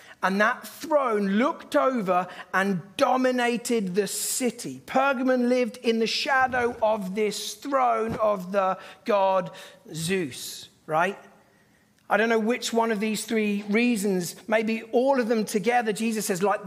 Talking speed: 140 wpm